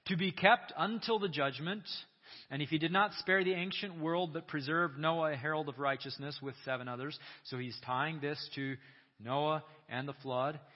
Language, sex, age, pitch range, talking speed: English, male, 30-49, 130-180 Hz, 190 wpm